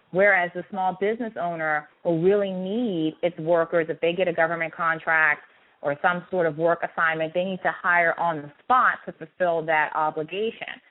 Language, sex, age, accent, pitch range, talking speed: English, female, 30-49, American, 160-195 Hz, 180 wpm